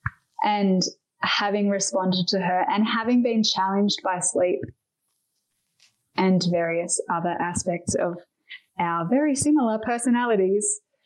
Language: English